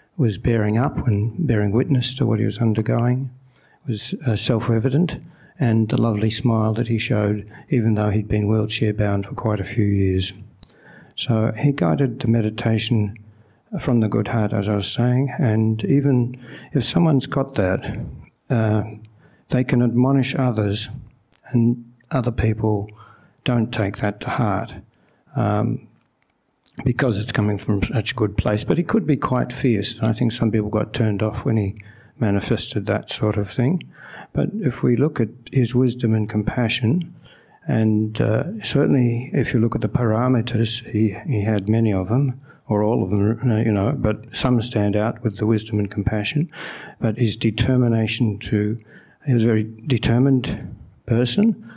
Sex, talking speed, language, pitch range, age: male, 160 wpm, English, 105-125 Hz, 60-79